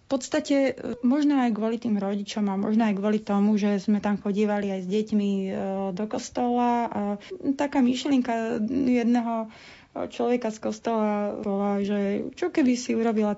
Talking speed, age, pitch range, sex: 150 wpm, 30-49, 205-235 Hz, female